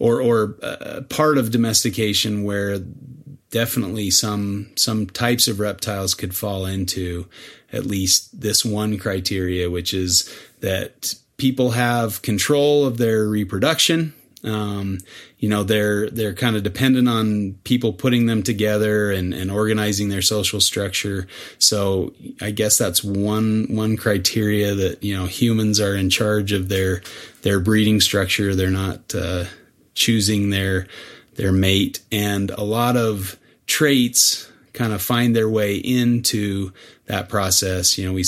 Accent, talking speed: American, 145 wpm